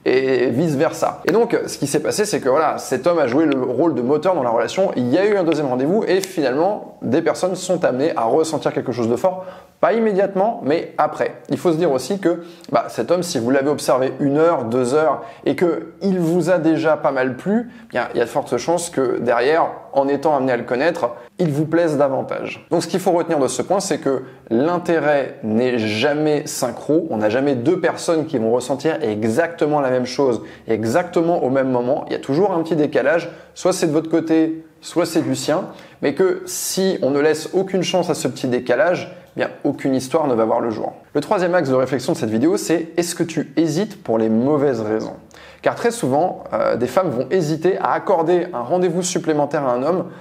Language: French